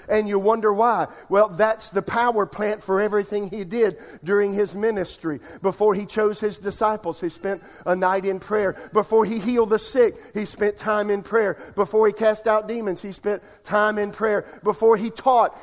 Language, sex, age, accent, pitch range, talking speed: English, male, 50-69, American, 160-215 Hz, 190 wpm